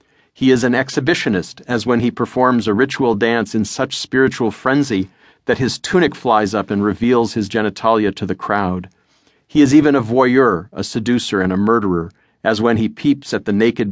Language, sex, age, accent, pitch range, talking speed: English, male, 50-69, American, 100-125 Hz, 190 wpm